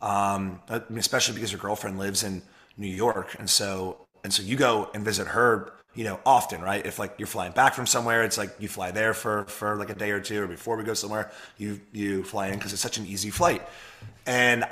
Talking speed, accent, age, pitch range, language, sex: 230 wpm, American, 30-49, 100-120 Hz, English, male